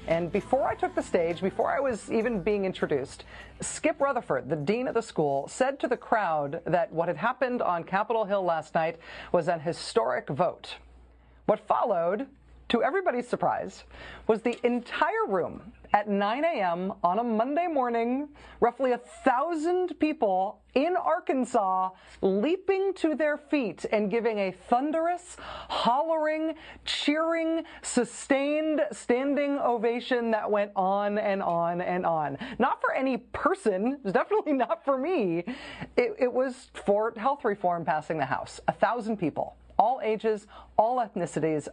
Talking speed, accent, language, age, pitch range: 150 wpm, American, English, 40-59, 175-280 Hz